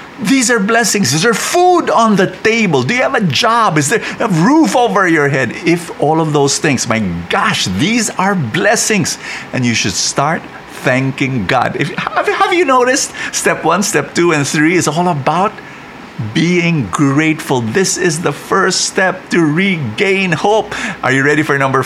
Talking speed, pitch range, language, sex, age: 175 wpm, 125-195 Hz, English, male, 50-69